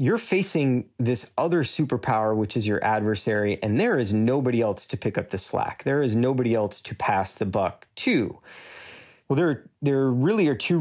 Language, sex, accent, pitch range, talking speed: English, male, American, 105-125 Hz, 190 wpm